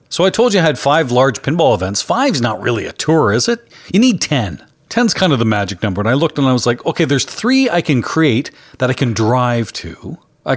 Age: 40-59